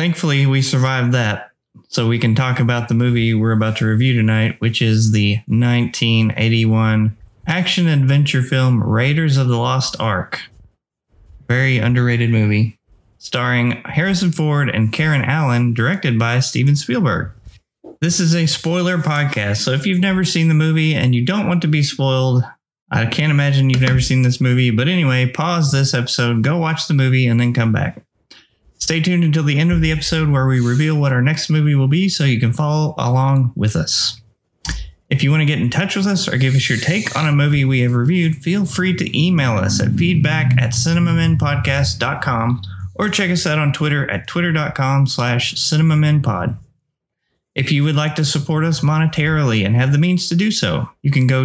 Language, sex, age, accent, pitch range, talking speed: English, male, 20-39, American, 120-155 Hz, 190 wpm